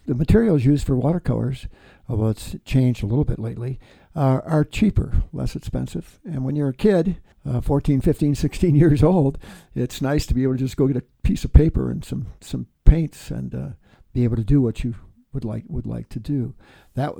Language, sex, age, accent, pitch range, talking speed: English, male, 60-79, American, 120-150 Hz, 210 wpm